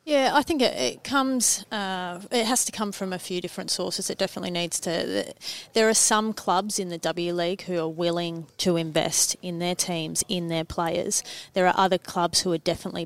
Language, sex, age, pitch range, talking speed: English, female, 30-49, 175-210 Hz, 220 wpm